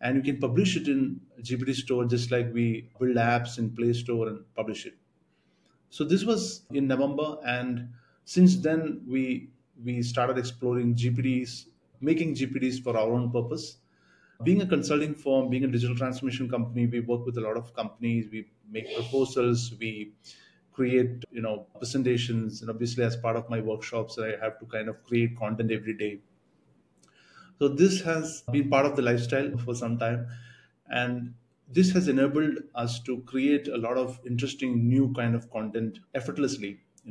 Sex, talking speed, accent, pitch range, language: male, 175 wpm, Indian, 120-140 Hz, English